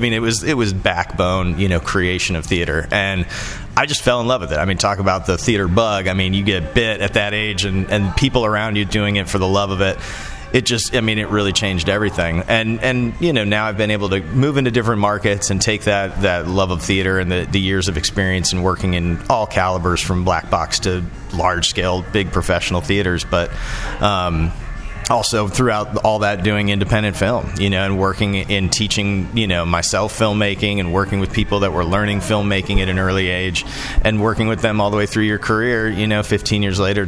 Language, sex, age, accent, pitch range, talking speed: English, male, 30-49, American, 90-105 Hz, 225 wpm